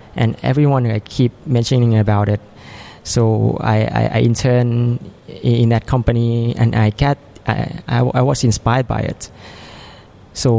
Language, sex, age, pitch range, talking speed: English, male, 20-39, 110-130 Hz, 165 wpm